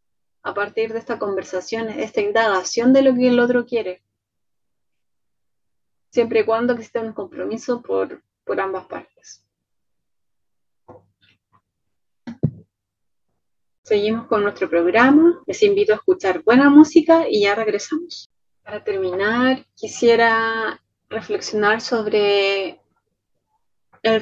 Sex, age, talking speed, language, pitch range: female, 30-49, 105 wpm, Spanish, 185-250 Hz